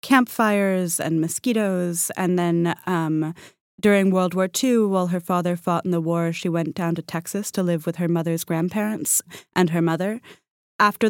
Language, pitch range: English, 170-200 Hz